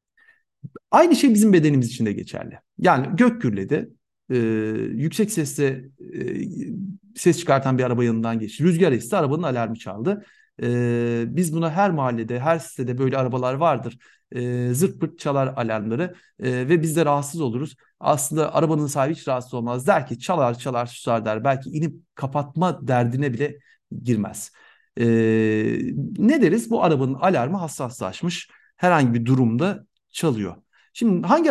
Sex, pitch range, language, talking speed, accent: male, 120-180 Hz, Turkish, 135 wpm, native